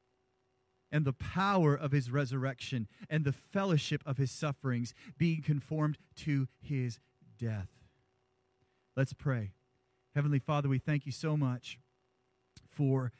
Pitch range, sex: 125-160 Hz, male